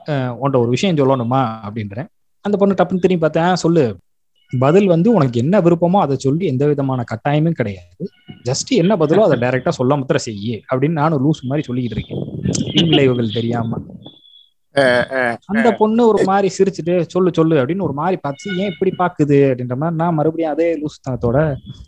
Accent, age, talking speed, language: native, 20-39, 160 wpm, Tamil